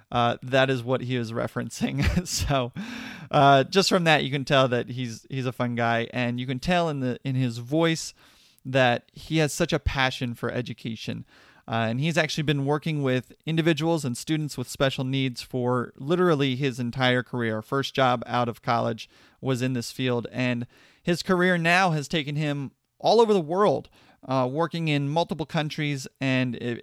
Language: English